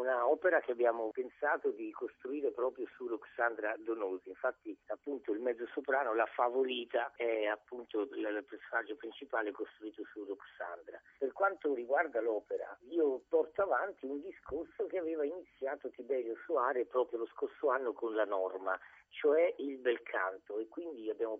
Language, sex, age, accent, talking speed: Italian, male, 50-69, native, 150 wpm